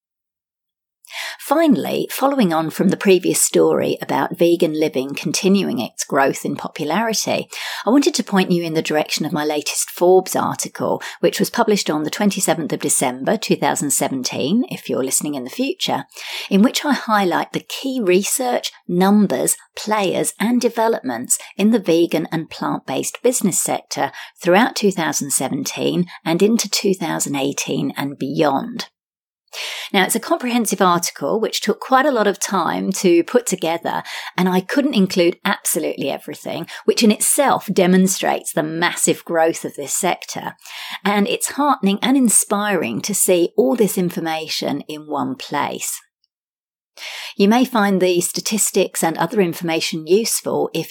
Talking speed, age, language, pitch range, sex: 145 wpm, 50-69, English, 160-215 Hz, female